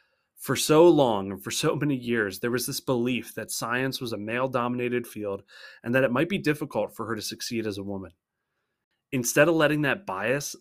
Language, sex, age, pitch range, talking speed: English, male, 20-39, 110-140 Hz, 205 wpm